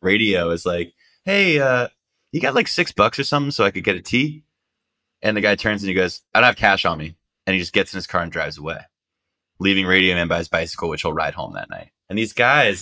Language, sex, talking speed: English, male, 260 wpm